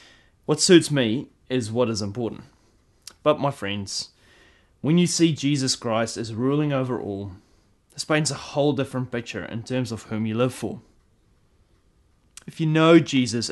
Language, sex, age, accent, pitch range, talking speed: English, male, 20-39, Australian, 105-140 Hz, 160 wpm